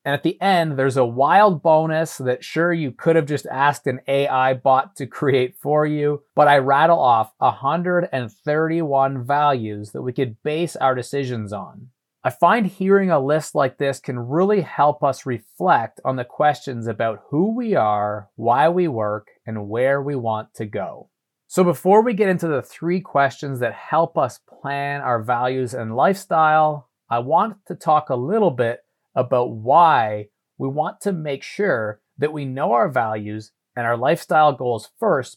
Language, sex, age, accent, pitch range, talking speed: English, male, 30-49, American, 125-160 Hz, 175 wpm